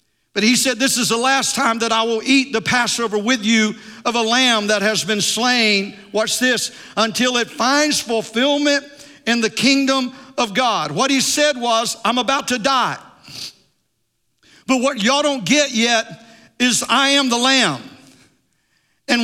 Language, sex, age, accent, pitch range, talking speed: English, male, 50-69, American, 230-280 Hz, 170 wpm